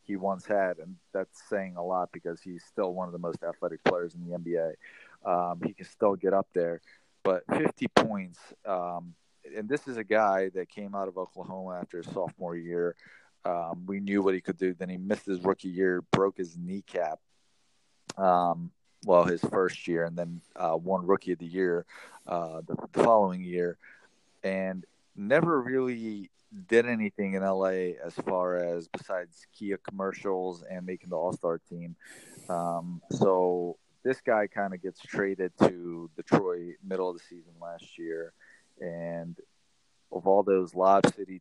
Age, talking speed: 30-49, 170 wpm